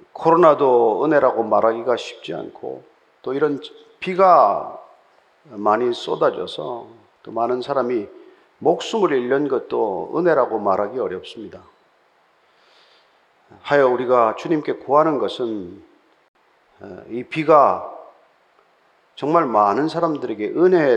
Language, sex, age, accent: Korean, male, 40-59, native